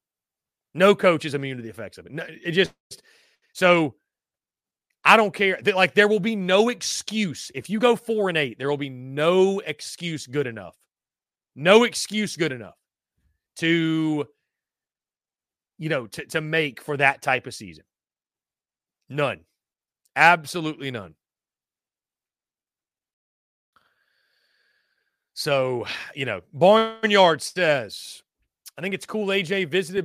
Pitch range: 140-195 Hz